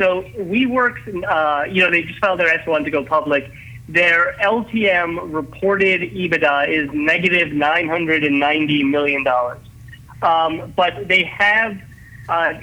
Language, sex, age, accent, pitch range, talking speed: English, male, 40-59, American, 145-180 Hz, 125 wpm